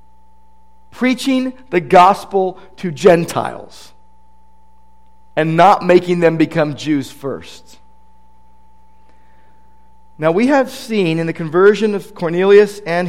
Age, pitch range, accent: 50-69, 125-185 Hz, American